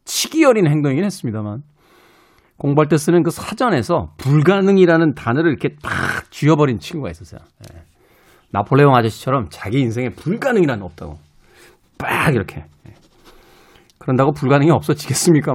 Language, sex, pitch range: Korean, male, 115-195 Hz